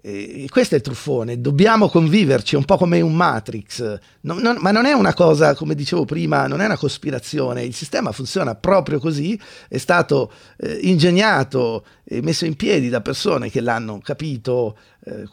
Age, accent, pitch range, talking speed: 50-69, native, 125-170 Hz, 165 wpm